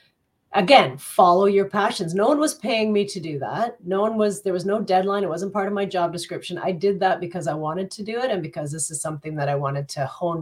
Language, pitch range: English, 155-190 Hz